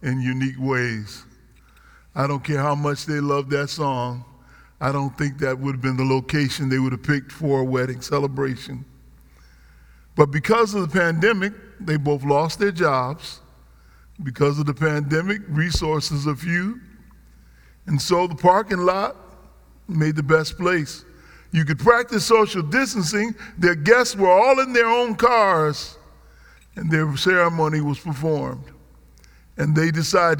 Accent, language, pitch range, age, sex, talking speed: American, English, 135-210 Hz, 50-69, male, 150 wpm